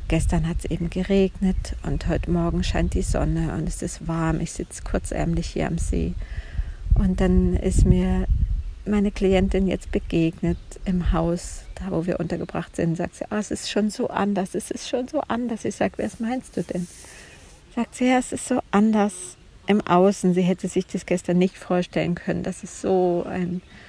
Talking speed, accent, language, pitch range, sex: 185 wpm, German, German, 160-195 Hz, female